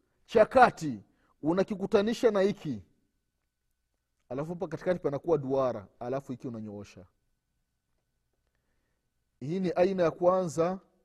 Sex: male